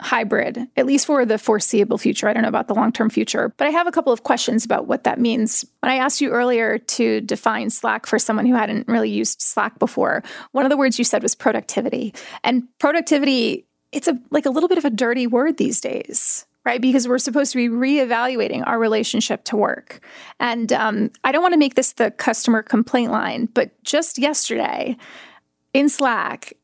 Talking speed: 205 wpm